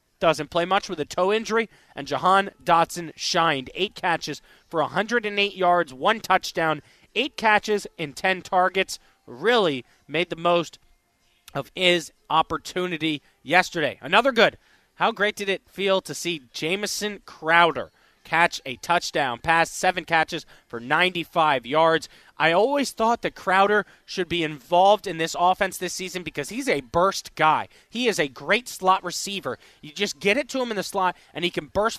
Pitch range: 150-190 Hz